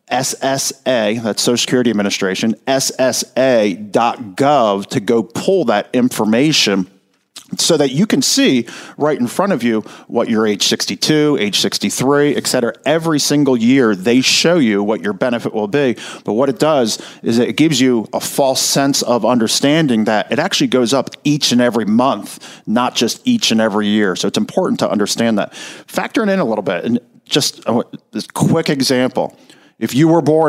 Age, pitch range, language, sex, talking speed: 40-59, 115-150 Hz, English, male, 170 wpm